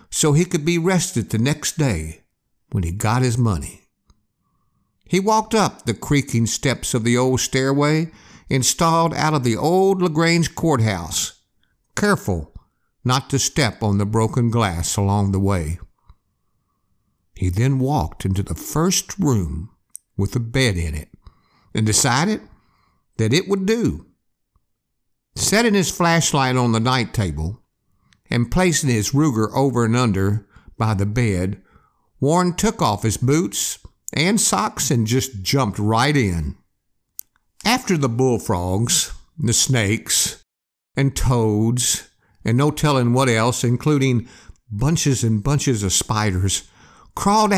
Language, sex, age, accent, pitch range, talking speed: English, male, 60-79, American, 100-155 Hz, 135 wpm